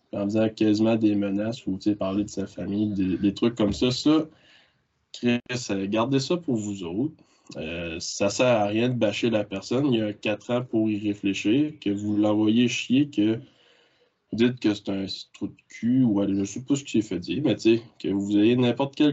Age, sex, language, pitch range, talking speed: 20-39, male, French, 100-120 Hz, 215 wpm